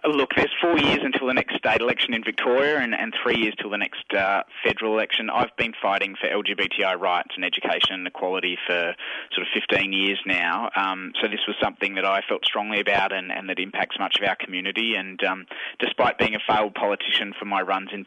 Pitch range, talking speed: 95-105 Hz, 220 wpm